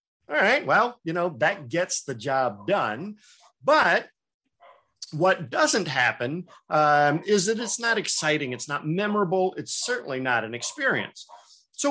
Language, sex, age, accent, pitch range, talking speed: English, male, 50-69, American, 130-185 Hz, 145 wpm